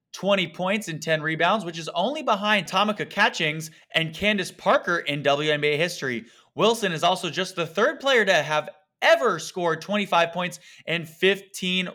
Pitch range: 125-175 Hz